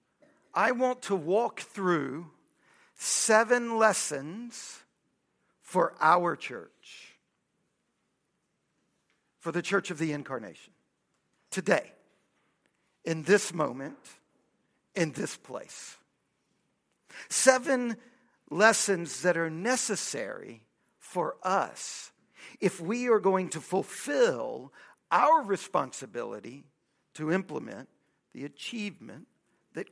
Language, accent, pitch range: English, American, 175-240 Hz